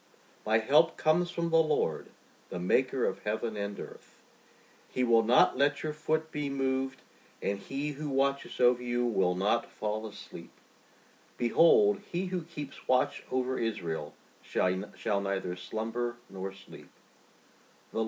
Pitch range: 105-140 Hz